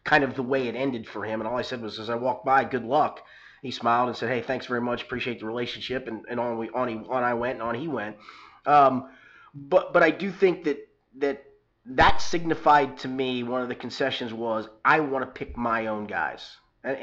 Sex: male